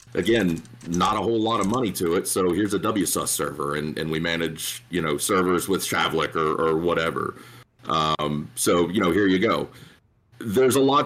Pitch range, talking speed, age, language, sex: 80-100 Hz, 195 wpm, 40-59, English, male